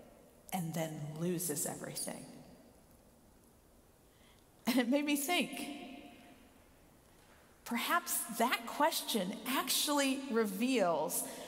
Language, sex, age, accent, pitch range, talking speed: English, female, 50-69, American, 205-275 Hz, 75 wpm